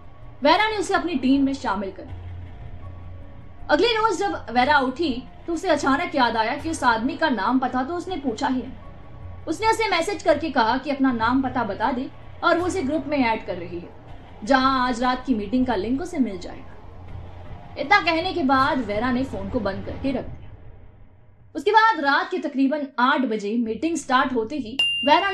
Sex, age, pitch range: female, 20-39, 225-315 Hz